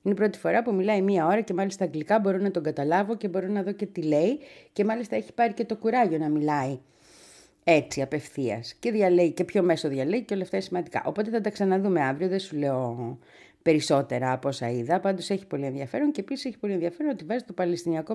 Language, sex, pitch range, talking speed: Greek, female, 150-225 Hz, 225 wpm